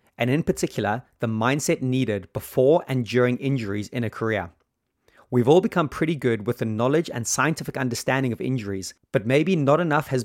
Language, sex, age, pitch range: English, male, 30-49, 115-145 Hz